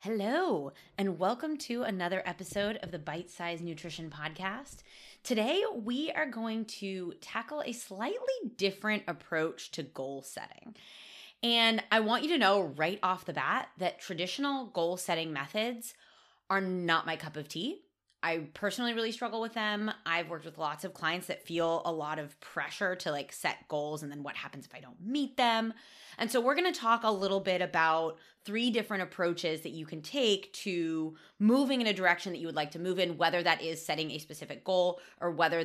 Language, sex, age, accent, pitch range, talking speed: English, female, 20-39, American, 160-230 Hz, 195 wpm